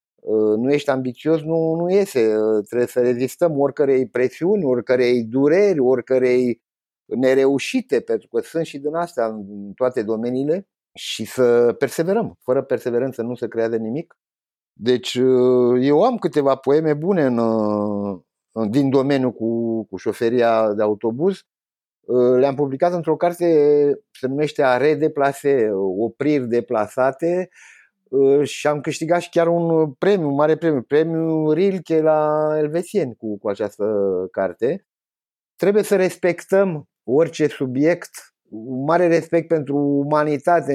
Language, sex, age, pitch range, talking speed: Romanian, male, 50-69, 125-160 Hz, 125 wpm